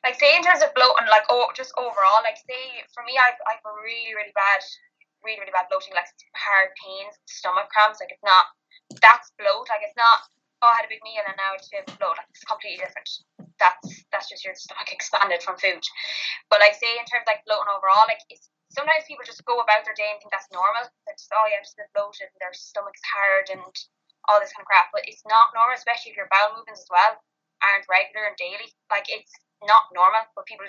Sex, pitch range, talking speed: female, 195-255 Hz, 235 wpm